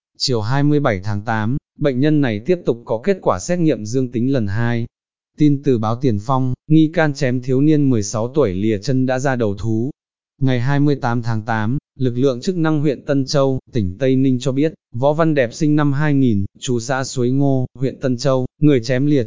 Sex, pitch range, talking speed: male, 115-145 Hz, 210 wpm